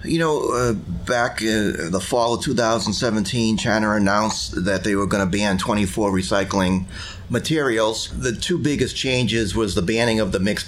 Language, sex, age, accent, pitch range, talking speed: English, male, 30-49, American, 95-115 Hz, 170 wpm